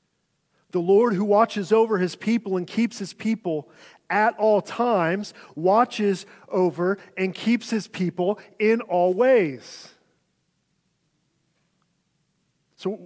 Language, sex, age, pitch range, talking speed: English, male, 40-59, 165-205 Hz, 110 wpm